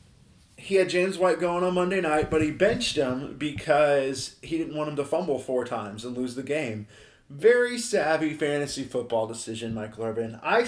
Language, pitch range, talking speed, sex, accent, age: English, 125-170 Hz, 185 wpm, male, American, 20-39